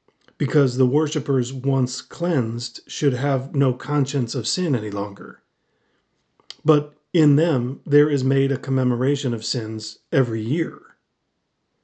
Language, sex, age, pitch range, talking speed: English, male, 40-59, 125-150 Hz, 125 wpm